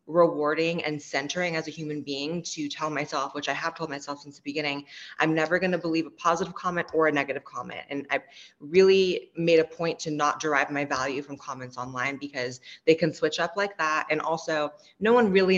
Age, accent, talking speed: 20-39, American, 220 wpm